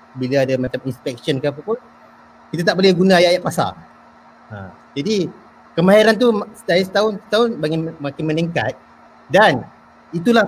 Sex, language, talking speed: male, Malay, 145 wpm